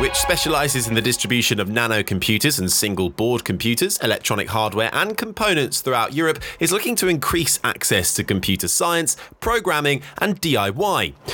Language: English